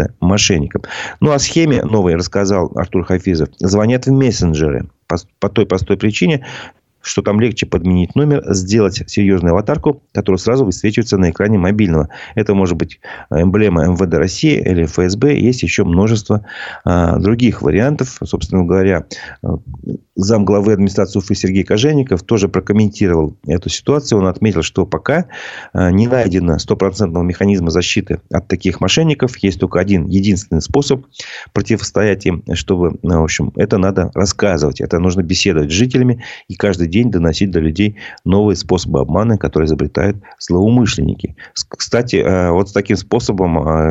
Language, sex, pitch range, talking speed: Russian, male, 90-110 Hz, 140 wpm